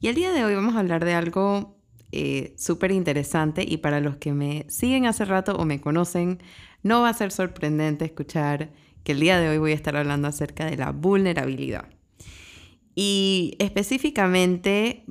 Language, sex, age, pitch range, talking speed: Spanish, female, 20-39, 150-190 Hz, 175 wpm